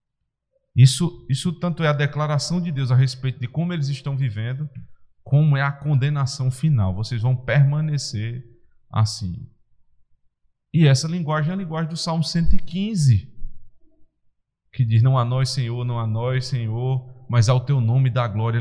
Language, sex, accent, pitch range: Portuguese, male, Brazilian, 120-165 Hz